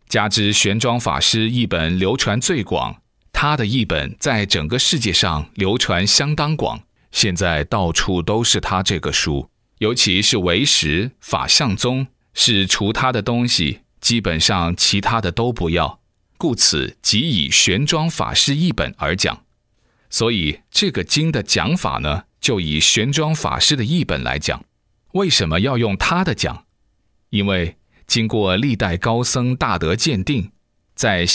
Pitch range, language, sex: 95-125 Hz, Chinese, male